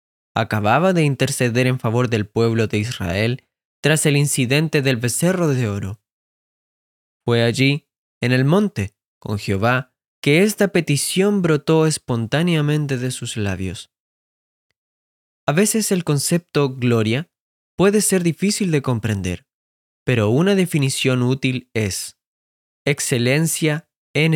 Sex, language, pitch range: male, Spanish, 115-160 Hz